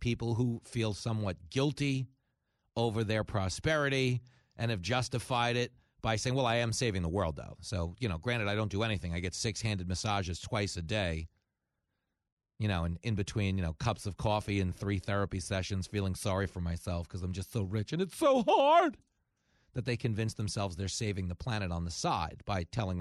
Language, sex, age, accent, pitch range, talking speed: English, male, 40-59, American, 95-135 Hz, 195 wpm